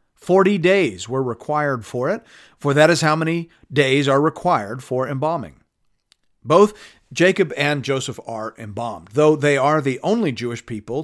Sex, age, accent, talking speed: male, 50-69, American, 160 wpm